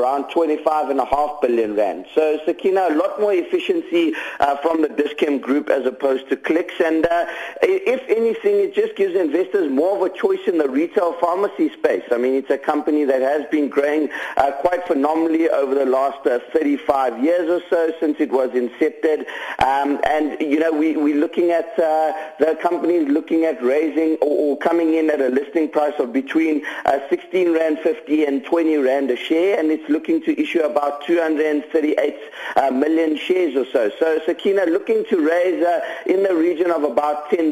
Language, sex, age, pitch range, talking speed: English, male, 50-69, 145-205 Hz, 190 wpm